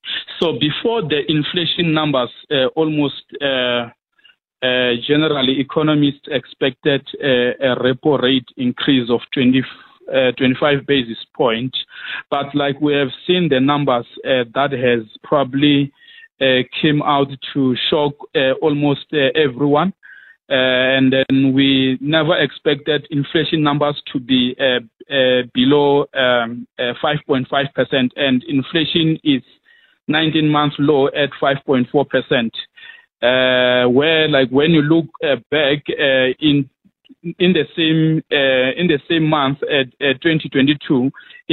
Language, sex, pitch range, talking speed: English, male, 130-155 Hz, 125 wpm